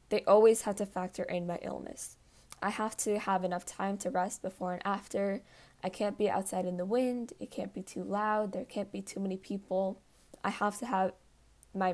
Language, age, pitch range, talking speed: English, 10-29, 185-205 Hz, 210 wpm